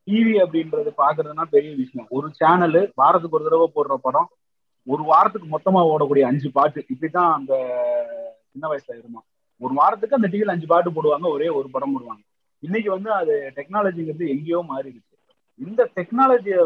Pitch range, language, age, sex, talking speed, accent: 145-220 Hz, Tamil, 30-49, male, 150 wpm, native